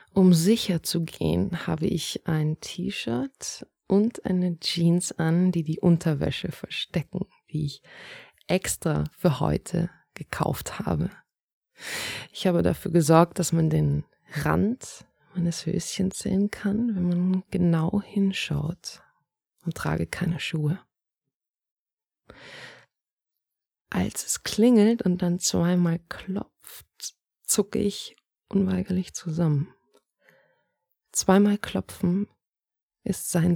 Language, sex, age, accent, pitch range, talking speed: German, female, 20-39, German, 170-210 Hz, 105 wpm